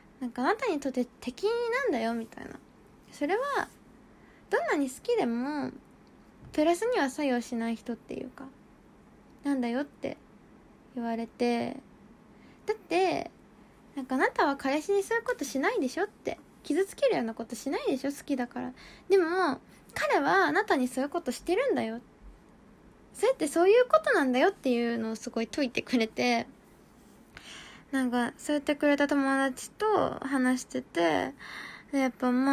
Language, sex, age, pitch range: Japanese, female, 20-39, 245-345 Hz